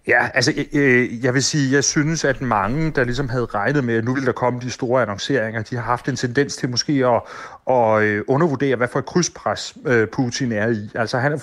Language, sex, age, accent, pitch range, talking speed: Danish, male, 30-49, native, 115-140 Hz, 225 wpm